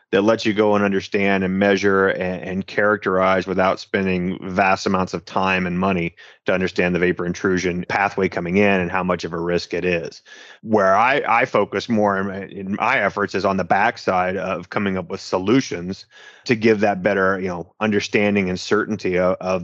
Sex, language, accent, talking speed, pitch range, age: male, English, American, 195 wpm, 95-105 Hz, 30-49